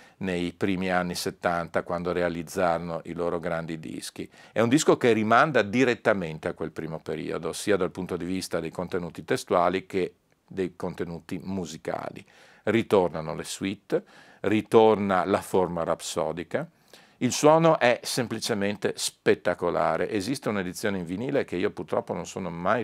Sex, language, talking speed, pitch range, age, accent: male, Italian, 140 wpm, 85-100 Hz, 50-69, native